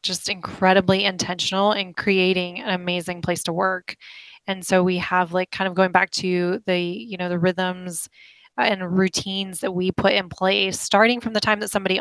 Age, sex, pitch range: 20-39, female, 185-210 Hz